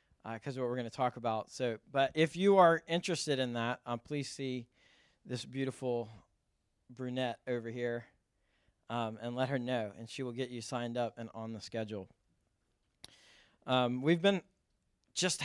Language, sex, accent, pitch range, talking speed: English, male, American, 125-155 Hz, 175 wpm